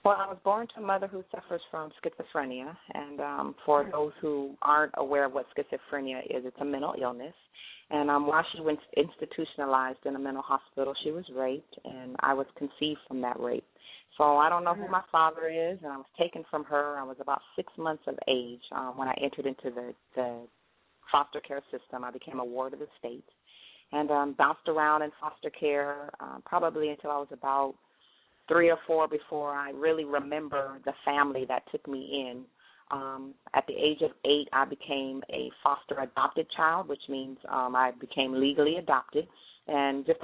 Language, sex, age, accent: English, female, 30-49, American